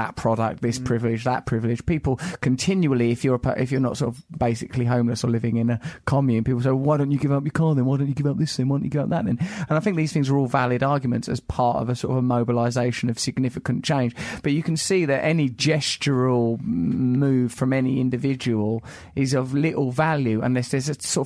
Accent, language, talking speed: British, English, 245 wpm